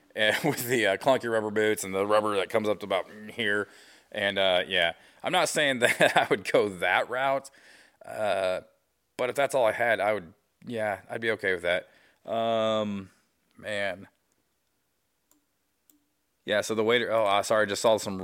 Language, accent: English, American